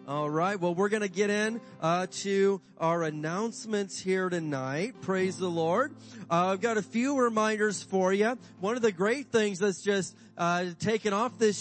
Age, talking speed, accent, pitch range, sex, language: 30-49, 185 wpm, American, 175-210 Hz, male, English